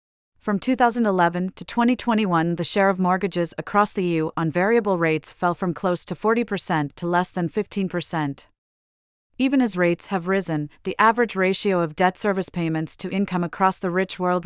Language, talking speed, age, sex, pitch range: English, 170 wpm, 30-49, female, 165-200 Hz